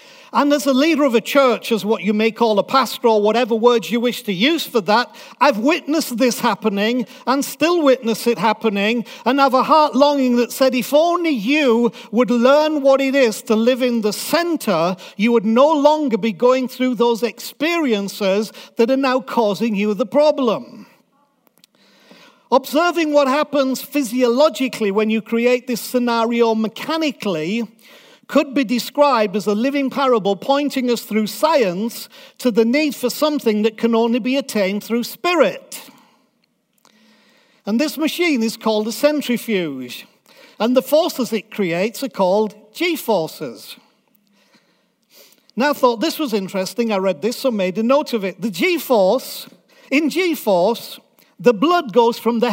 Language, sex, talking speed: English, male, 160 wpm